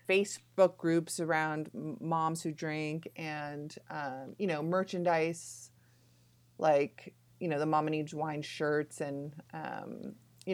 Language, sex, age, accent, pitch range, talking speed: English, female, 30-49, American, 145-185 Hz, 125 wpm